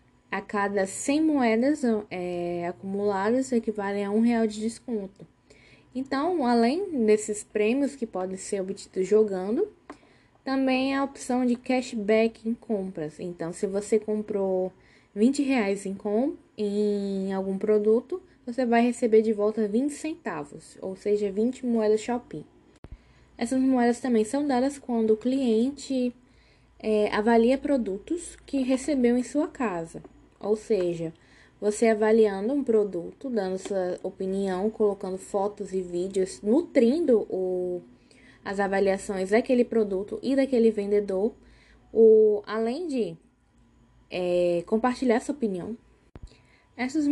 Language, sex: Portuguese, female